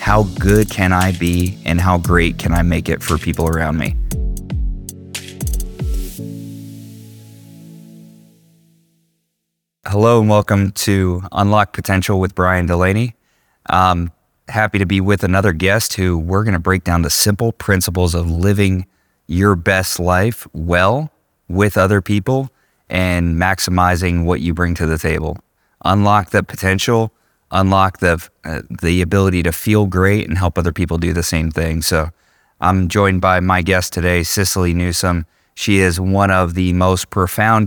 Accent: American